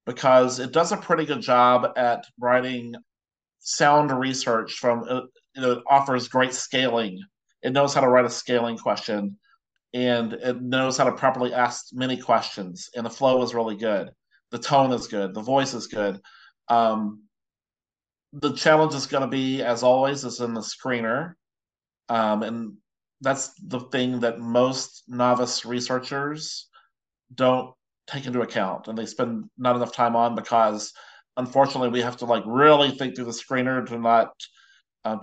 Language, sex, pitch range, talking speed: English, male, 115-130 Hz, 165 wpm